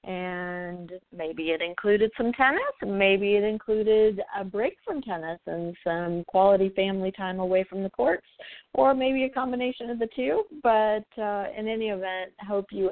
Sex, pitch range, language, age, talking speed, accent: female, 175-215 Hz, English, 40-59, 165 wpm, American